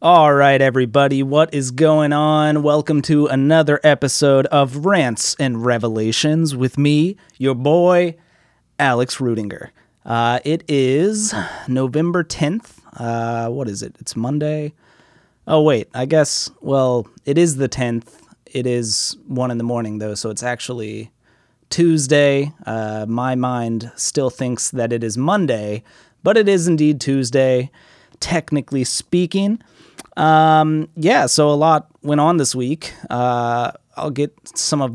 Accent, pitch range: American, 120-150 Hz